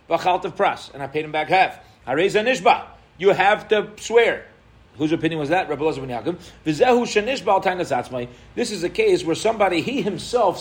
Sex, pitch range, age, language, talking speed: male, 115-175 Hz, 40-59, English, 125 wpm